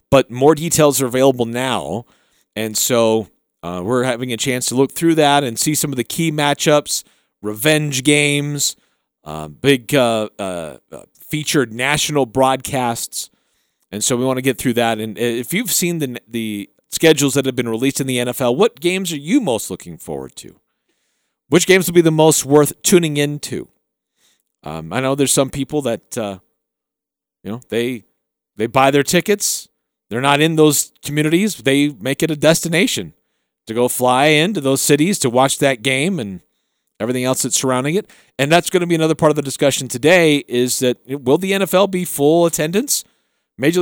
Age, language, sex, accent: 40-59, English, male, American